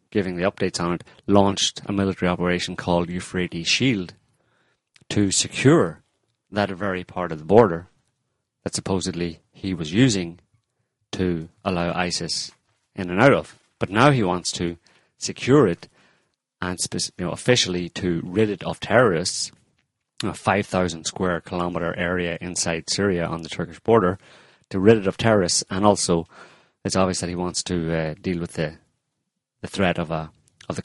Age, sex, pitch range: 30-49, male, 85-100 Hz